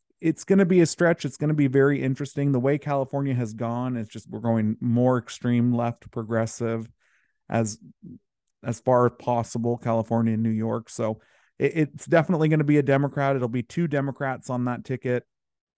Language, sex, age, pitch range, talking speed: English, male, 30-49, 115-140 Hz, 185 wpm